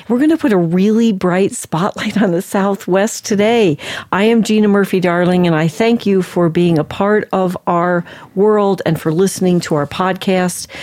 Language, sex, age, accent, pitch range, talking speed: English, female, 50-69, American, 160-195 Hz, 190 wpm